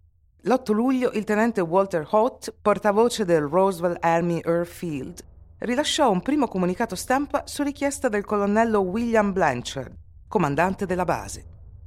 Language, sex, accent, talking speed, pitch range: Italian, female, native, 130 wpm, 115-195 Hz